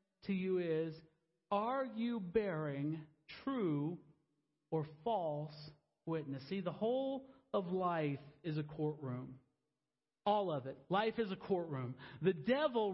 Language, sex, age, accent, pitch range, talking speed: English, male, 40-59, American, 145-215 Hz, 125 wpm